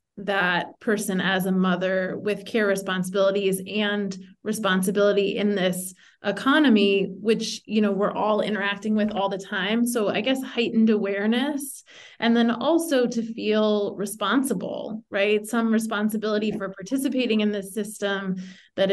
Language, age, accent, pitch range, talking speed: English, 20-39, American, 195-230 Hz, 135 wpm